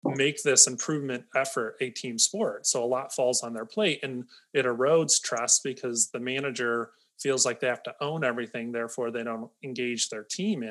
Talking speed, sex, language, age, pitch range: 190 wpm, male, English, 30-49, 120-145 Hz